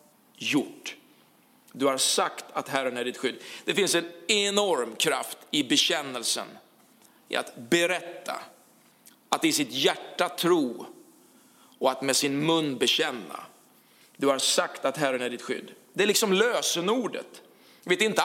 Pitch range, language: 155-230 Hz, Swedish